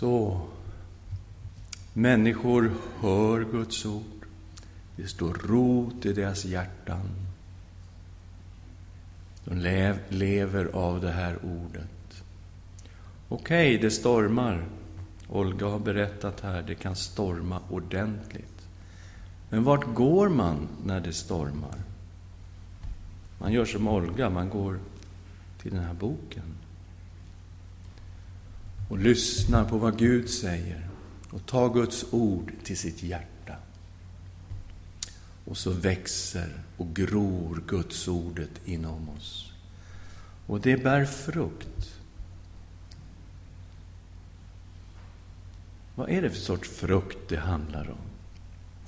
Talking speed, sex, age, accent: 95 wpm, male, 50-69, Swedish